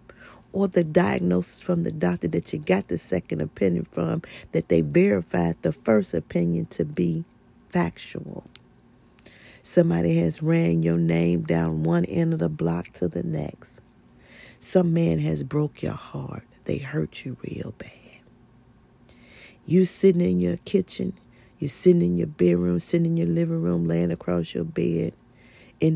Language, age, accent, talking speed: English, 40-59, American, 155 wpm